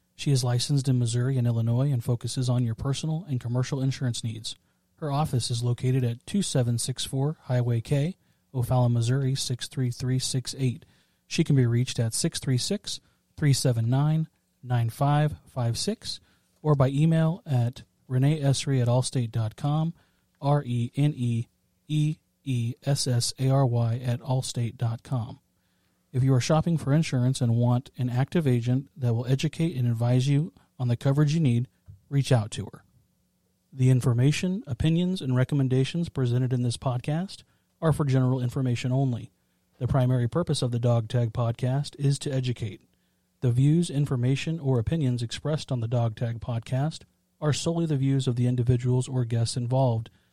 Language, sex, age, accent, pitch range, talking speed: English, male, 40-59, American, 120-140 Hz, 135 wpm